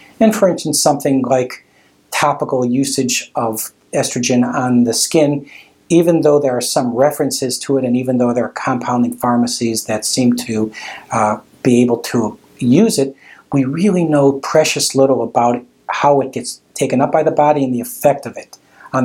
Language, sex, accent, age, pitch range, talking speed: English, male, American, 50-69, 120-145 Hz, 175 wpm